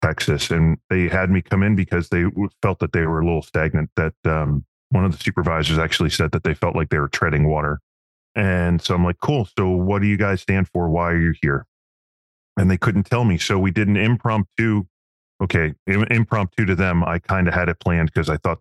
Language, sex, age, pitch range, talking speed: English, male, 30-49, 90-115 Hz, 230 wpm